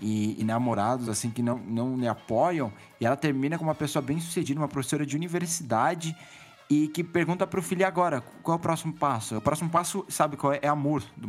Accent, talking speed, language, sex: Brazilian, 215 wpm, Portuguese, male